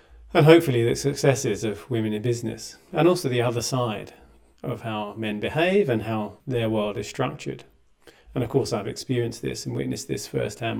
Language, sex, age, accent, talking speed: English, male, 40-59, British, 185 wpm